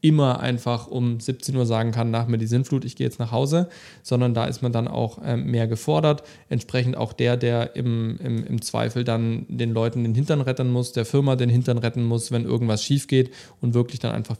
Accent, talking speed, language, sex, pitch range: German, 220 wpm, German, male, 115-130 Hz